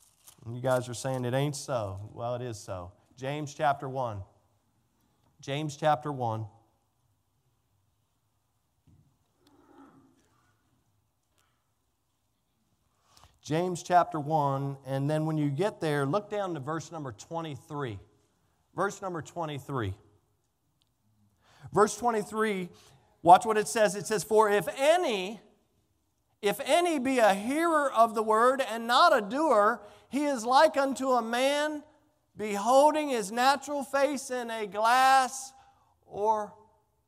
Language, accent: English, American